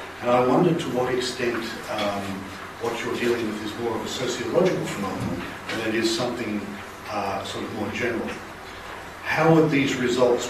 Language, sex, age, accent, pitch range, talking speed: English, male, 40-59, Australian, 95-120 Hz, 170 wpm